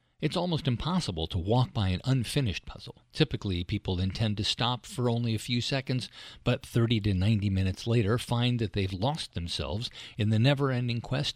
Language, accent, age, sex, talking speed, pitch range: English, American, 50-69, male, 180 wpm, 105-135 Hz